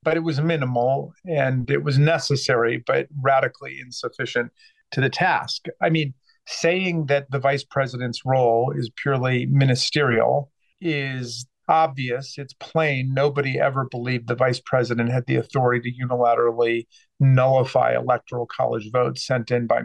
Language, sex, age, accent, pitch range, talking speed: English, male, 40-59, American, 125-150 Hz, 140 wpm